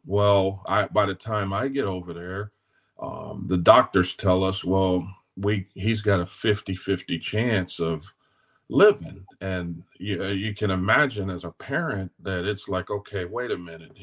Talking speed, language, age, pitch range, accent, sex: 165 wpm, English, 40-59, 95-110 Hz, American, male